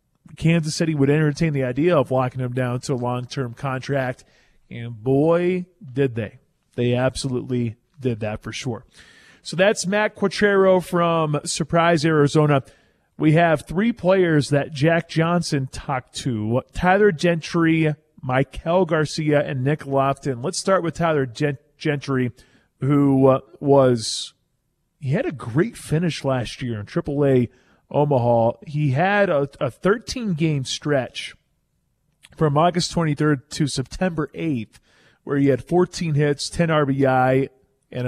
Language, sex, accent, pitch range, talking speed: English, male, American, 130-165 Hz, 135 wpm